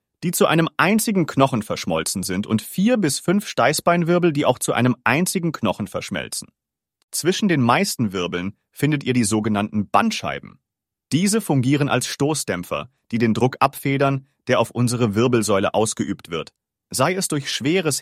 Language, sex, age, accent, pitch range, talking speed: English, male, 30-49, German, 115-160 Hz, 155 wpm